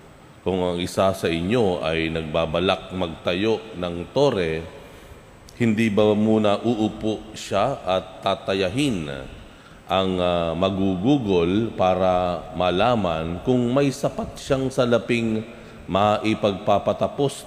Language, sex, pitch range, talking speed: Filipino, male, 90-110 Hz, 95 wpm